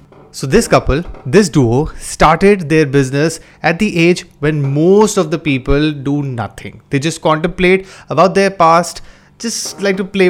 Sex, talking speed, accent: male, 165 wpm, native